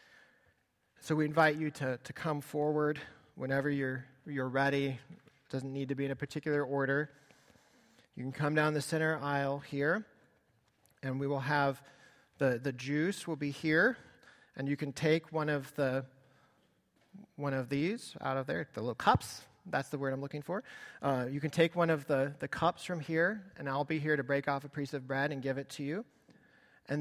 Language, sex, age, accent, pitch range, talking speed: English, male, 40-59, American, 130-155 Hz, 200 wpm